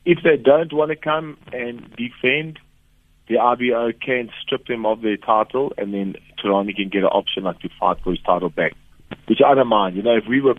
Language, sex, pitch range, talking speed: English, male, 100-125 Hz, 220 wpm